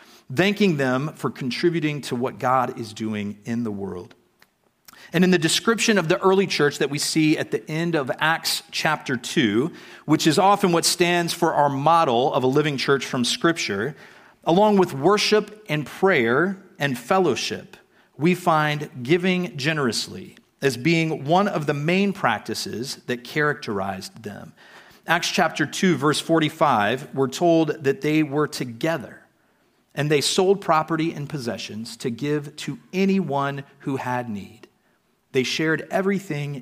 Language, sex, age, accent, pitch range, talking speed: English, male, 40-59, American, 125-175 Hz, 150 wpm